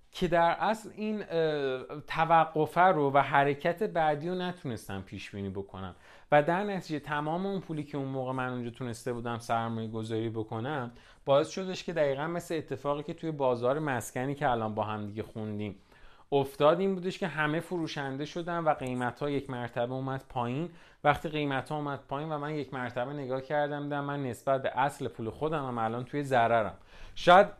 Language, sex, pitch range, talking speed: Persian, male, 115-160 Hz, 175 wpm